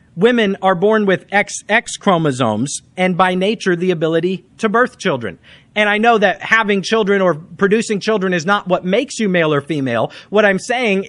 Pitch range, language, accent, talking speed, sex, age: 175-215 Hz, English, American, 185 wpm, male, 40-59